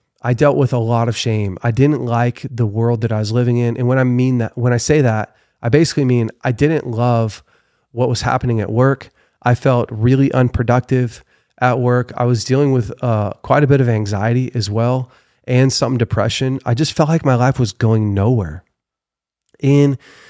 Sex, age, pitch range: male, 30-49, 120-140 Hz